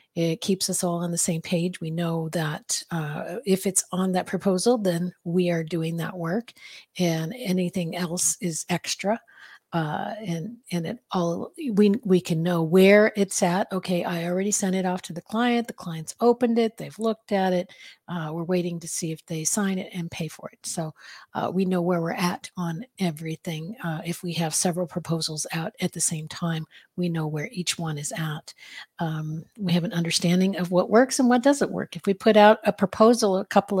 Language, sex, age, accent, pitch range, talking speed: English, female, 50-69, American, 170-200 Hz, 210 wpm